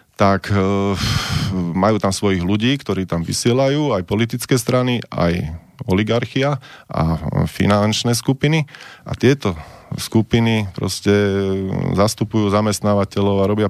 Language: Slovak